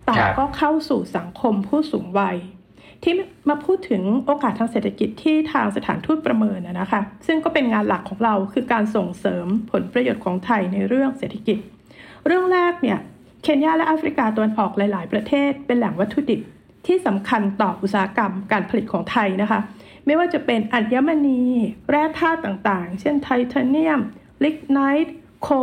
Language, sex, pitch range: Thai, female, 205-285 Hz